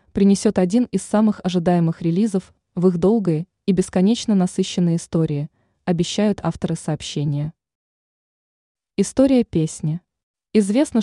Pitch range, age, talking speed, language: 175-220 Hz, 20-39, 105 wpm, Russian